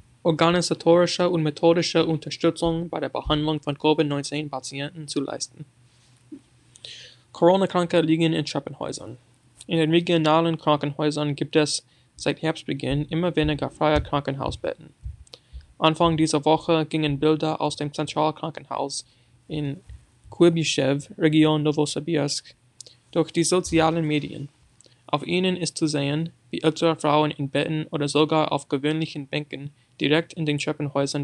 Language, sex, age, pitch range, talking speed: German, male, 20-39, 135-160 Hz, 120 wpm